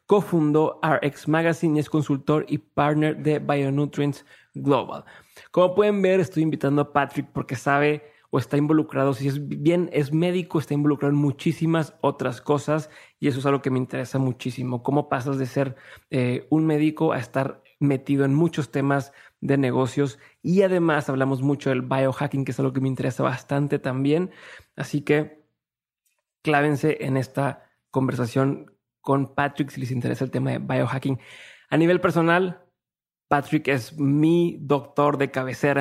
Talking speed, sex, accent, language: 160 wpm, male, Mexican, Spanish